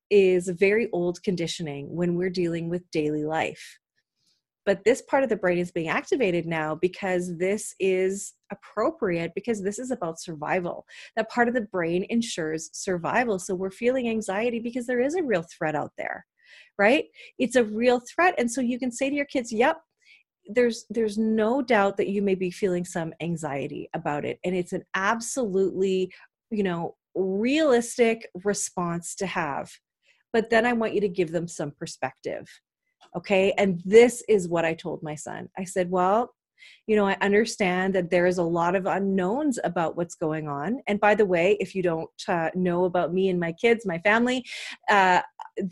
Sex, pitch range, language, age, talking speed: female, 175-225 Hz, English, 30-49, 185 wpm